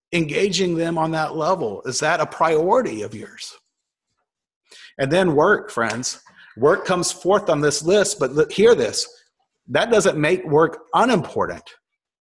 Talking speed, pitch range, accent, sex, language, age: 140 wpm, 145-200 Hz, American, male, English, 40-59